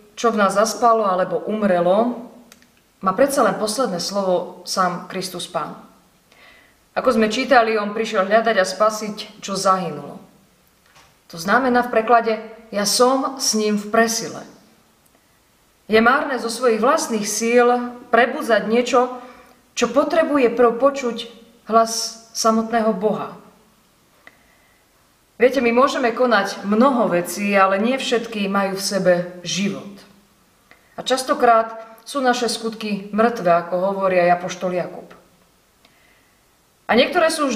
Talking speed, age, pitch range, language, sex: 120 wpm, 30-49, 200-235 Hz, Slovak, female